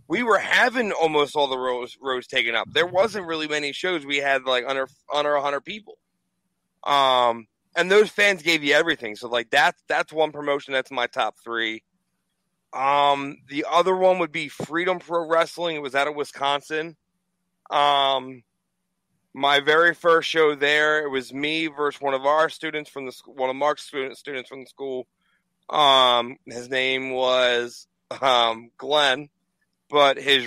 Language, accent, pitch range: English, American, 130-155 Hz